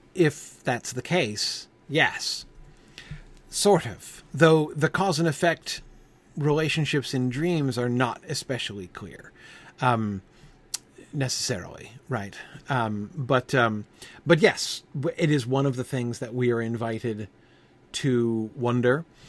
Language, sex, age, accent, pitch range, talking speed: English, male, 40-59, American, 115-135 Hz, 120 wpm